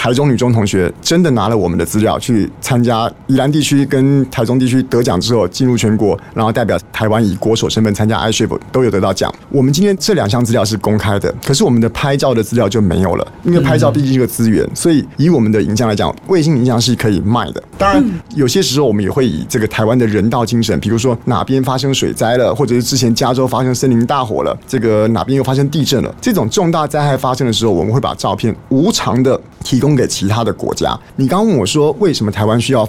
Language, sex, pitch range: Chinese, male, 110-135 Hz